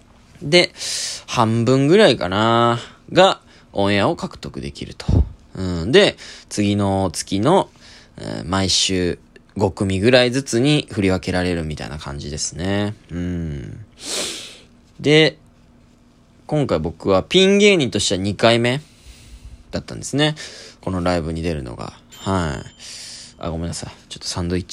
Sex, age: male, 20-39